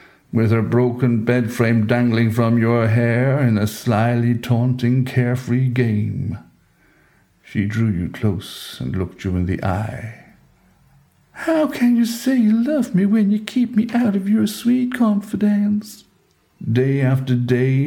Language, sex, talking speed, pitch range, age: English, male, 145 wpm, 105-135 Hz, 60-79